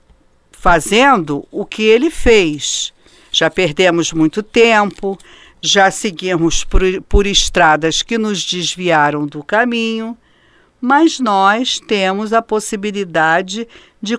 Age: 50-69